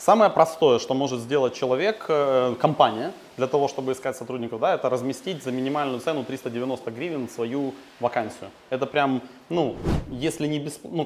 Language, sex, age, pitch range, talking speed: Russian, male, 20-39, 125-150 Hz, 155 wpm